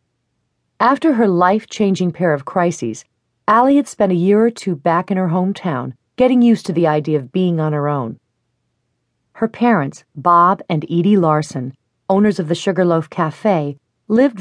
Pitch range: 155-200 Hz